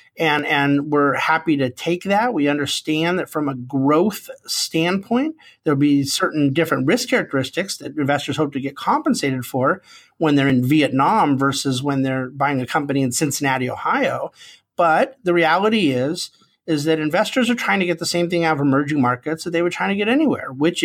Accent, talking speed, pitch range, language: American, 190 wpm, 135-175 Hz, English